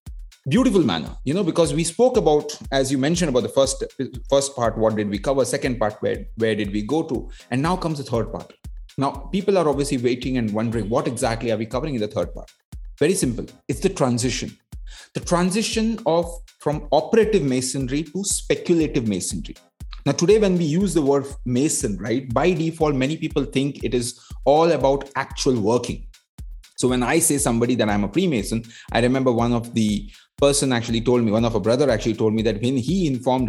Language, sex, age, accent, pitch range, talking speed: English, male, 30-49, Indian, 115-155 Hz, 200 wpm